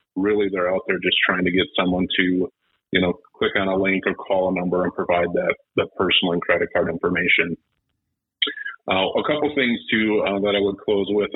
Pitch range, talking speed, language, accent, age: 95-105 Hz, 210 wpm, English, American, 40-59